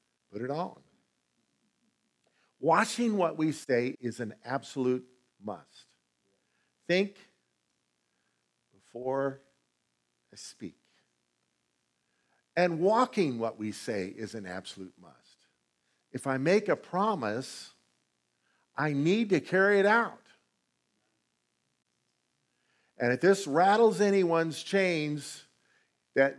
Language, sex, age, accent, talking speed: English, male, 50-69, American, 95 wpm